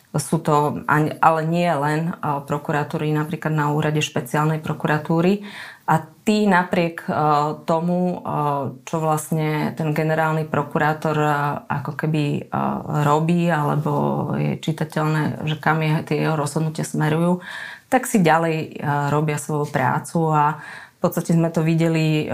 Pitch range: 150-165 Hz